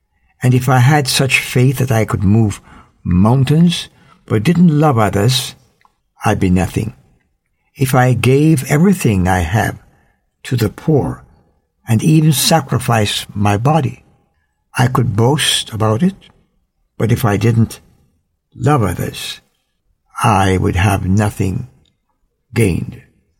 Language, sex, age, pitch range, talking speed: English, male, 60-79, 105-135 Hz, 125 wpm